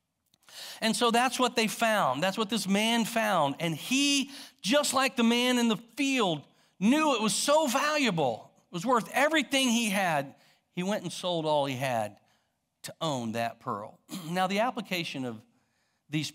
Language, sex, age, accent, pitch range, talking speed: English, male, 50-69, American, 135-215 Hz, 175 wpm